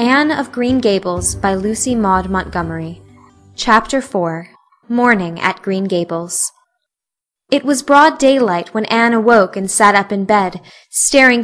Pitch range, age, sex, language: 195-250 Hz, 10-29, female, Korean